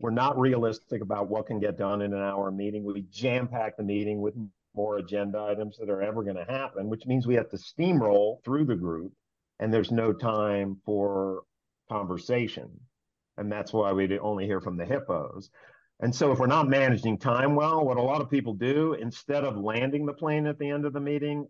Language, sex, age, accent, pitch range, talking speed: English, male, 50-69, American, 105-145 Hz, 210 wpm